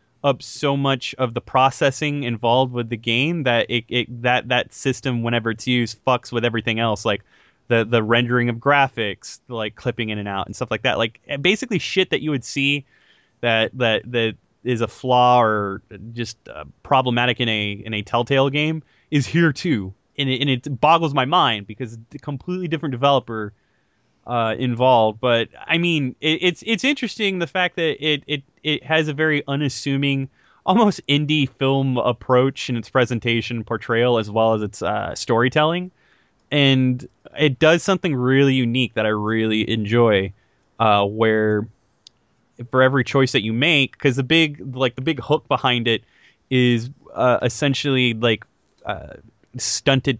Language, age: English, 20-39